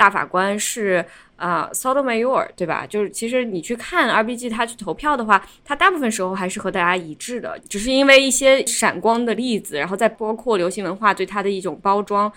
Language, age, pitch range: Chinese, 20-39, 195-245 Hz